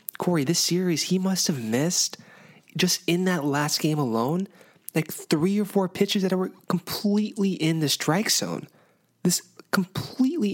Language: English